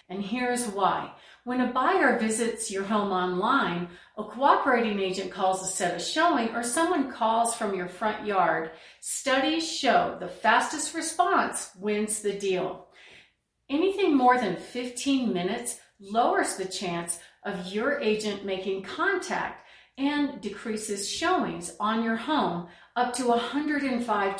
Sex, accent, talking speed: female, American, 135 wpm